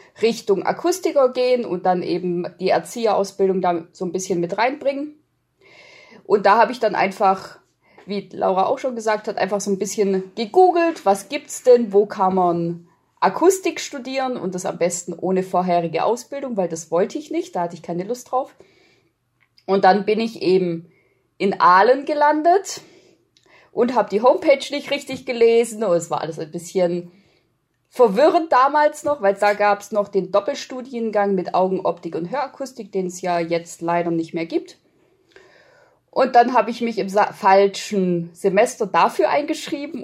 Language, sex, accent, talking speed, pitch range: German, female, German, 165 wpm, 185-265 Hz